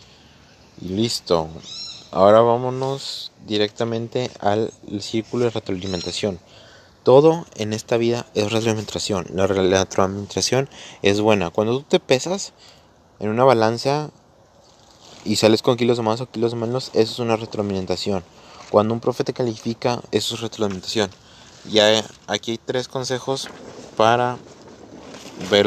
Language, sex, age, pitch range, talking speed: Spanish, male, 20-39, 100-120 Hz, 125 wpm